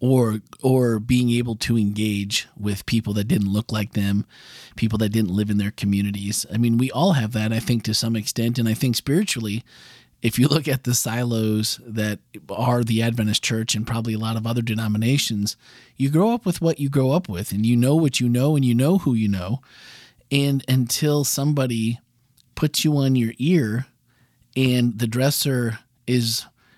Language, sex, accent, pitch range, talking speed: English, male, American, 115-140 Hz, 195 wpm